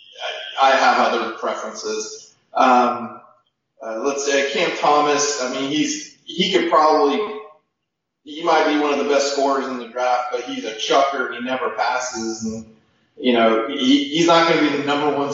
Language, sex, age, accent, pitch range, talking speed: English, male, 20-39, American, 120-155 Hz, 180 wpm